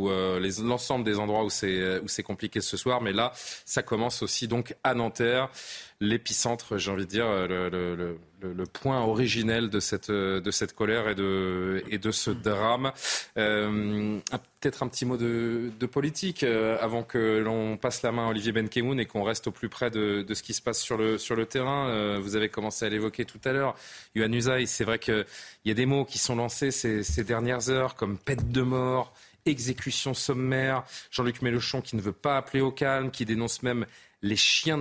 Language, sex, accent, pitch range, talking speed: French, male, French, 105-130 Hz, 215 wpm